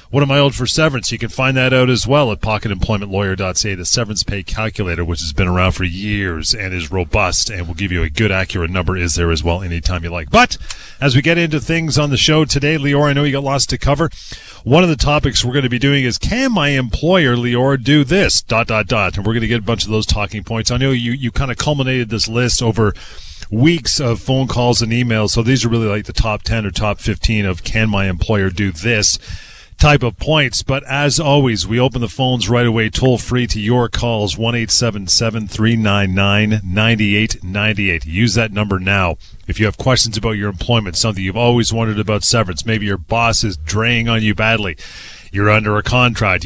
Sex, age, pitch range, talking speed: male, 30-49, 100-125 Hz, 220 wpm